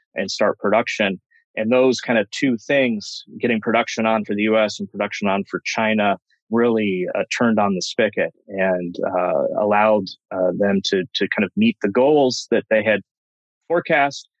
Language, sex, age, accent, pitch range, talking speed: English, male, 30-49, American, 105-130 Hz, 175 wpm